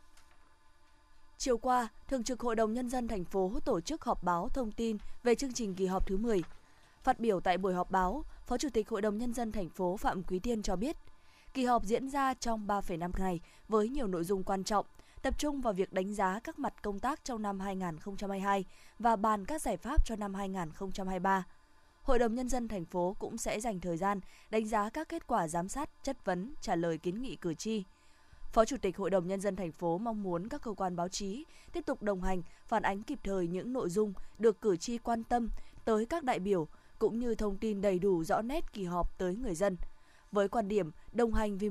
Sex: female